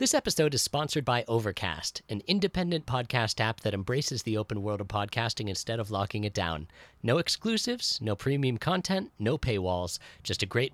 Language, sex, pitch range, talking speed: English, male, 115-180 Hz, 180 wpm